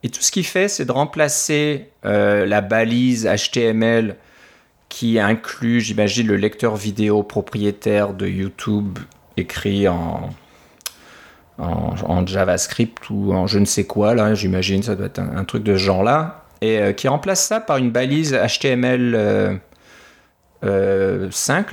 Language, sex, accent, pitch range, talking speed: French, male, French, 105-140 Hz, 150 wpm